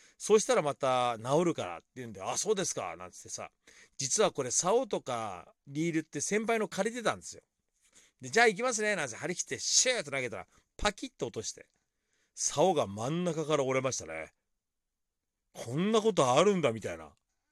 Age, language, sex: 40-59, Japanese, male